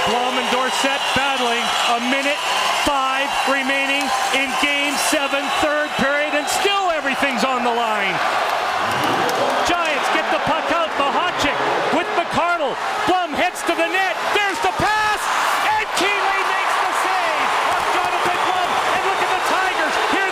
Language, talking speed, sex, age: English, 155 wpm, male, 40-59